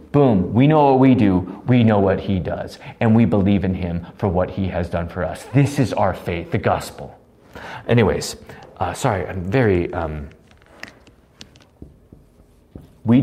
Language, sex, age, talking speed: English, male, 40-59, 165 wpm